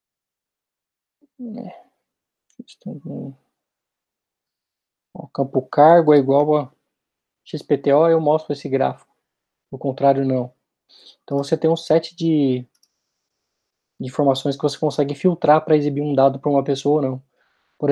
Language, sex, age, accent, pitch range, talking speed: Portuguese, male, 20-39, Brazilian, 135-155 Hz, 125 wpm